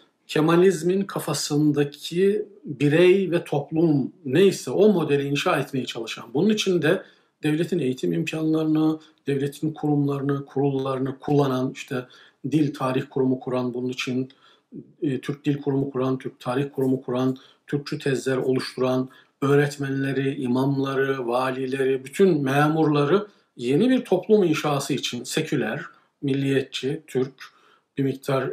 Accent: native